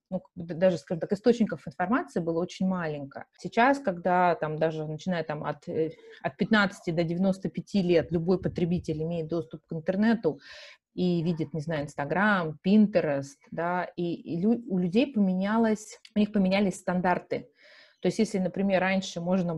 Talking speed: 150 wpm